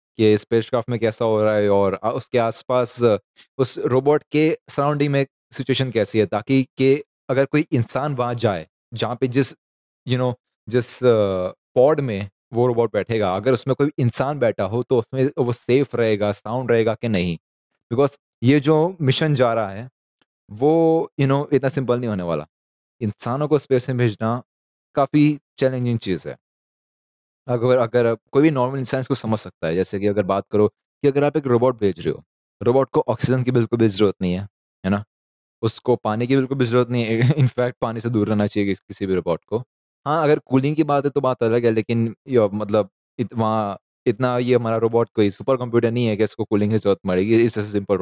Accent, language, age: native, Hindi, 30-49